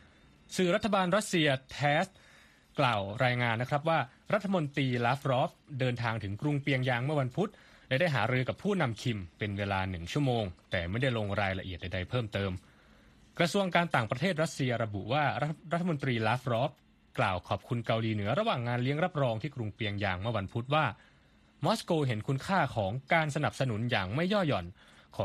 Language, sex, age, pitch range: Thai, male, 20-39, 105-145 Hz